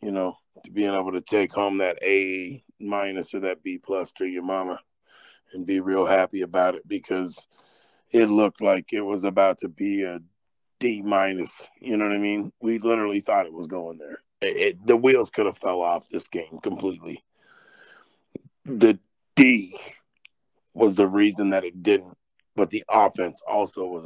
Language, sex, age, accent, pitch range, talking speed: English, male, 40-59, American, 95-120 Hz, 165 wpm